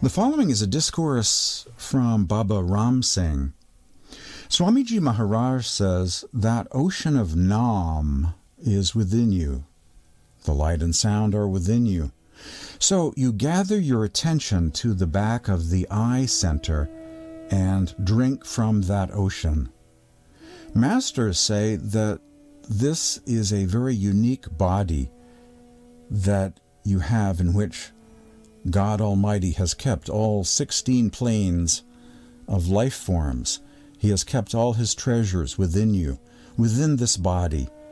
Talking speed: 125 wpm